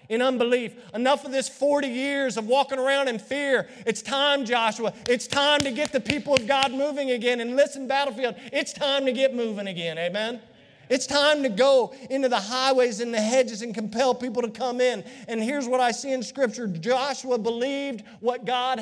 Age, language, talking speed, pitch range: 40-59, English, 200 wpm, 190-250 Hz